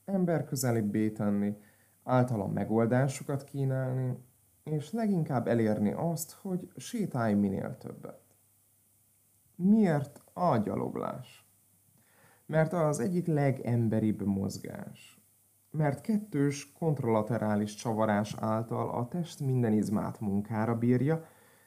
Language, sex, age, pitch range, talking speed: Hungarian, male, 30-49, 105-140 Hz, 90 wpm